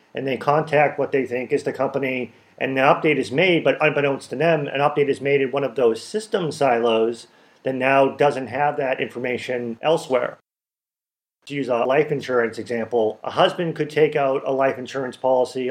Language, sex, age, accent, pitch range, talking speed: English, male, 40-59, American, 125-145 Hz, 190 wpm